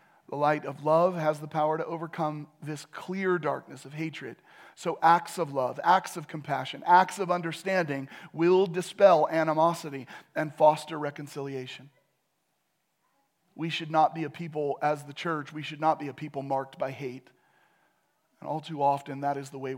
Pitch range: 140-165 Hz